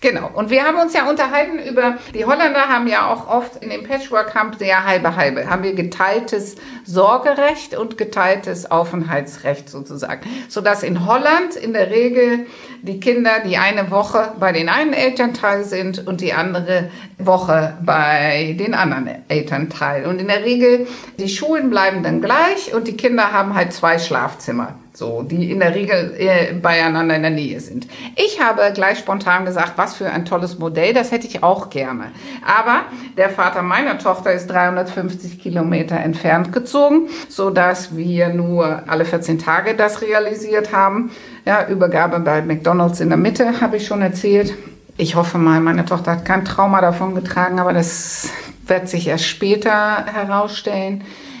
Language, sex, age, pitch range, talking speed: German, female, 60-79, 175-225 Hz, 165 wpm